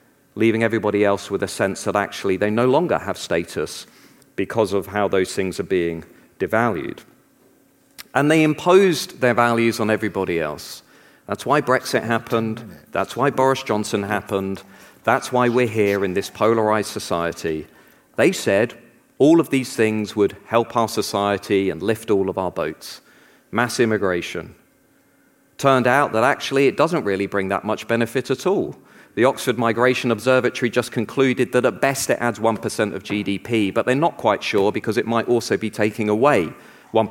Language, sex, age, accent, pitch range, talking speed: English, male, 40-59, British, 105-135 Hz, 170 wpm